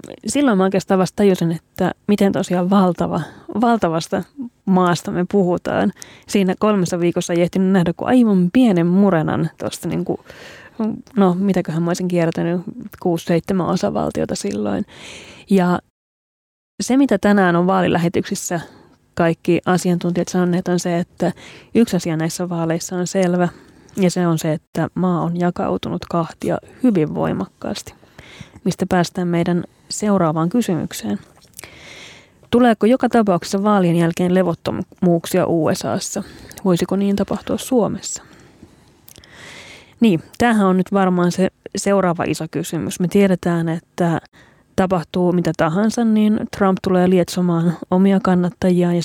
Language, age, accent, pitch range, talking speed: Finnish, 30-49, native, 170-200 Hz, 120 wpm